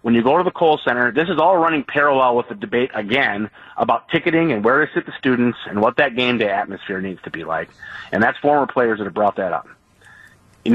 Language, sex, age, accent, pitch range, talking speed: English, male, 40-59, American, 120-175 Hz, 245 wpm